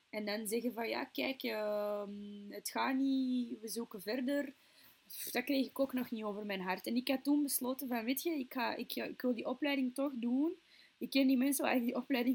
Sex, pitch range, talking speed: female, 200-260 Hz, 230 wpm